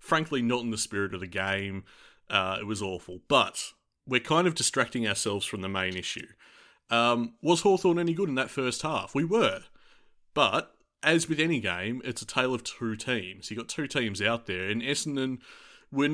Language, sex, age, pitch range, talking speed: English, male, 30-49, 105-140 Hz, 195 wpm